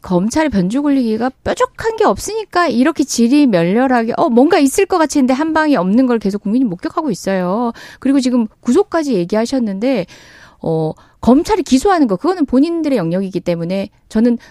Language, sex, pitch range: Korean, female, 210-285 Hz